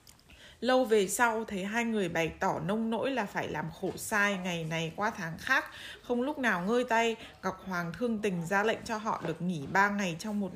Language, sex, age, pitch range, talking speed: Vietnamese, female, 20-39, 190-255 Hz, 220 wpm